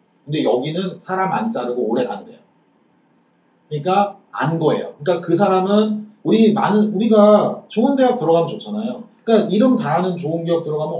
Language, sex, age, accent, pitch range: Korean, male, 40-59, native, 175-225 Hz